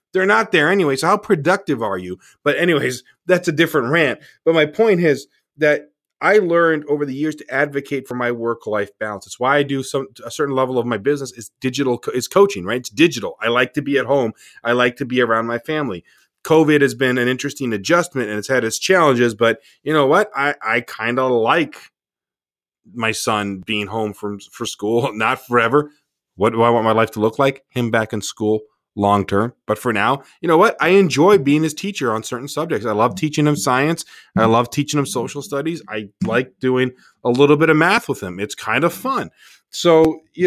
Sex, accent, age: male, American, 30-49